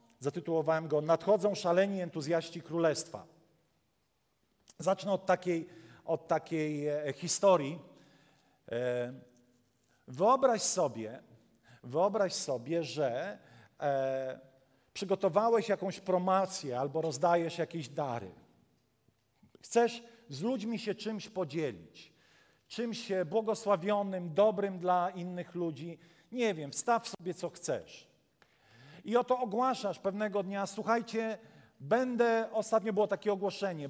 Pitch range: 165-220 Hz